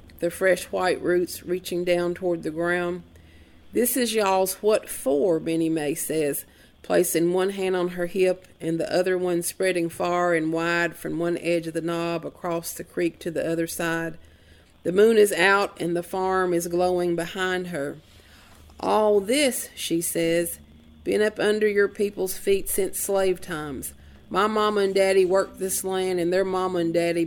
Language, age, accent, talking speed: English, 40-59, American, 175 wpm